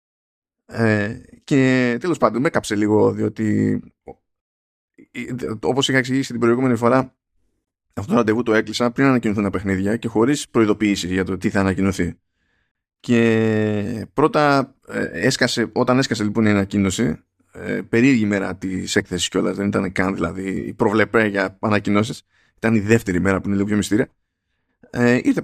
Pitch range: 100-145 Hz